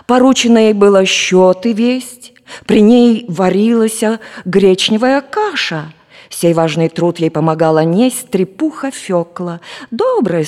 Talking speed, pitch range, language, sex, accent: 115 wpm, 180-280 Hz, Russian, female, native